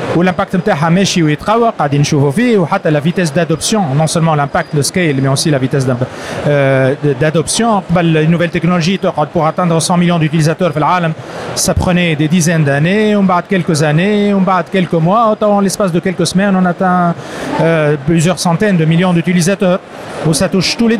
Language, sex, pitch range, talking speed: Arabic, male, 155-190 Hz, 155 wpm